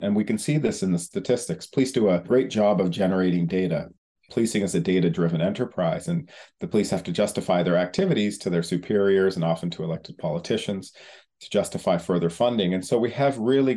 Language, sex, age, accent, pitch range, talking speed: English, male, 40-59, American, 95-125 Hz, 200 wpm